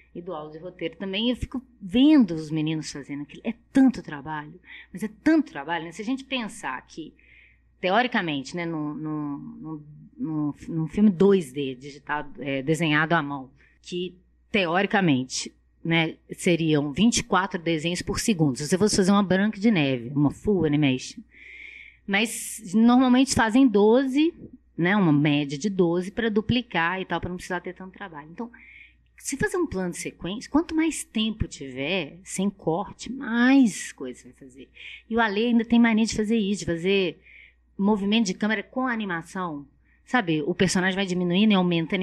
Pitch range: 150-225 Hz